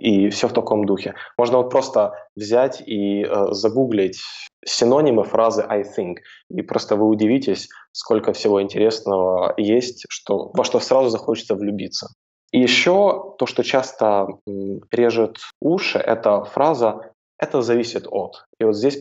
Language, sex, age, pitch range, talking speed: Russian, male, 20-39, 100-130 Hz, 145 wpm